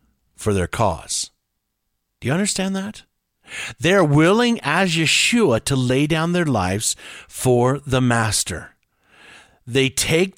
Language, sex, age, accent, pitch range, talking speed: English, male, 50-69, American, 115-165 Hz, 120 wpm